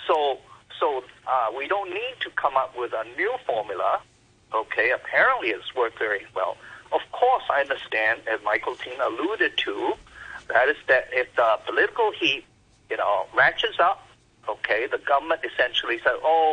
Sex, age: male, 50-69